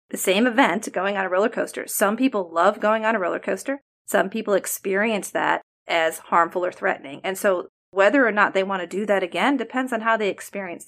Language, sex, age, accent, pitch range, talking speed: English, female, 30-49, American, 190-235 Hz, 220 wpm